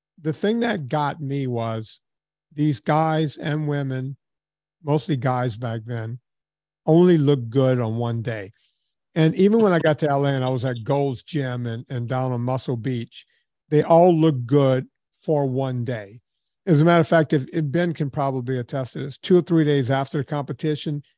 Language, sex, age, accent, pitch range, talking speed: English, male, 50-69, American, 130-155 Hz, 185 wpm